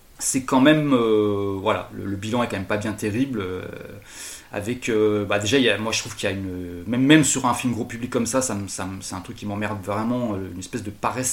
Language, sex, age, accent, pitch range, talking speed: French, male, 20-39, French, 105-130 Hz, 265 wpm